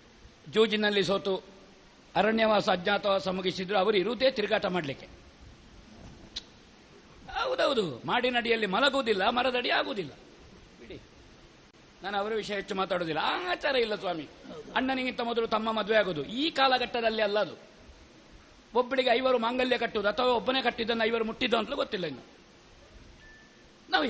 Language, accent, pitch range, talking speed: Kannada, native, 220-280 Hz, 110 wpm